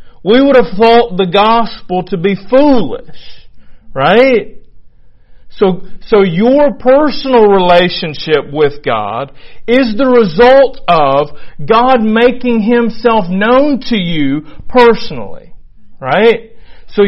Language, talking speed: English, 105 wpm